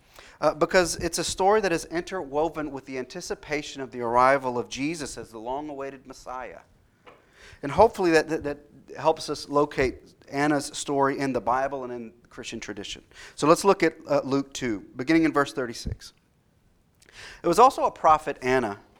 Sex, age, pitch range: male, 40-59, 120-150 Hz